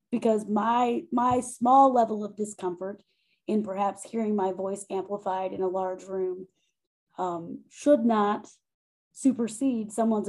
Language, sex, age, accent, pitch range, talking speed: English, female, 30-49, American, 190-225 Hz, 130 wpm